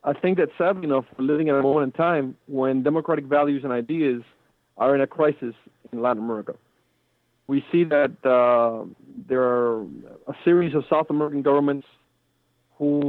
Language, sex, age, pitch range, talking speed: English, male, 40-59, 125-150 Hz, 170 wpm